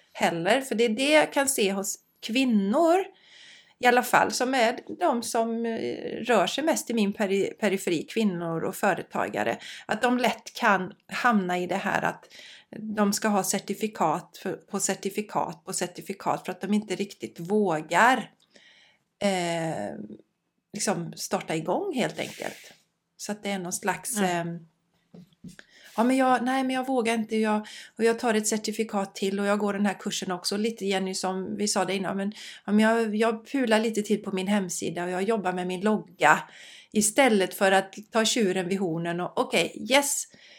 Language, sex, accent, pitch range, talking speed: Swedish, female, native, 185-225 Hz, 175 wpm